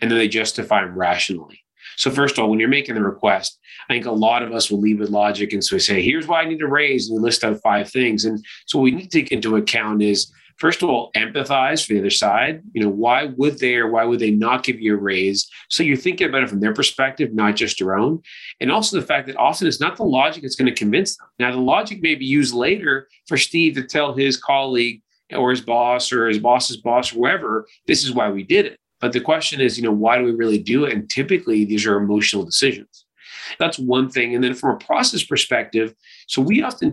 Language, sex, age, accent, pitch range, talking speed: English, male, 40-59, American, 110-150 Hz, 255 wpm